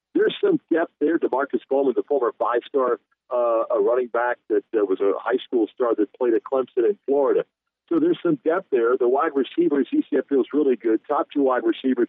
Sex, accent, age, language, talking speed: male, American, 50-69, English, 210 wpm